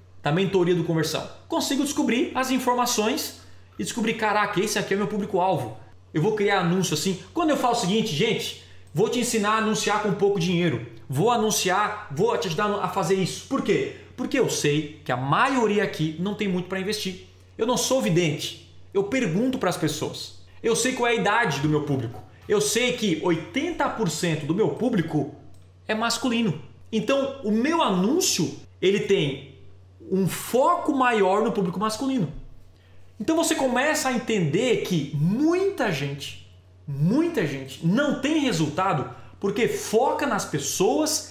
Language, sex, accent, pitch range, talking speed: Portuguese, male, Brazilian, 145-235 Hz, 165 wpm